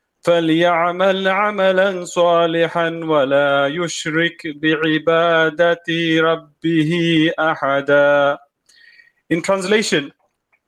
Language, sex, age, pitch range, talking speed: English, male, 30-49, 140-175 Hz, 55 wpm